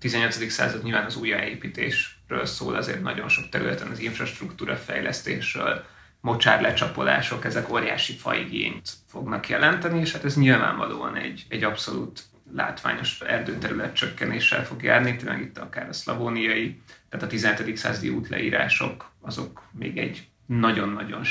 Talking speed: 130 wpm